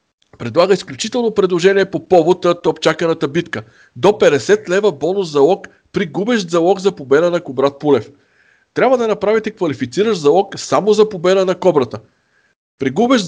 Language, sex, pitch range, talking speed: Bulgarian, male, 140-200 Hz, 165 wpm